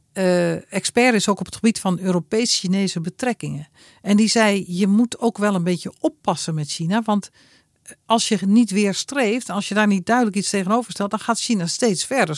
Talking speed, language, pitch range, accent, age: 200 wpm, Dutch, 180-225 Hz, Dutch, 50-69